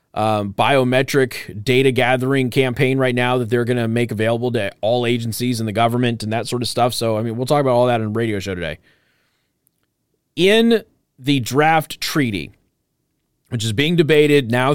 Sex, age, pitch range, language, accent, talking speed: male, 30-49, 120-150 Hz, English, American, 185 wpm